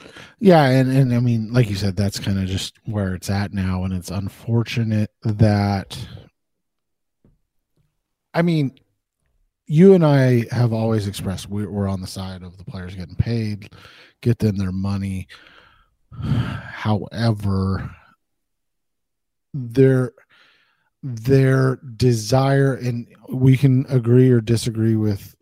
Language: English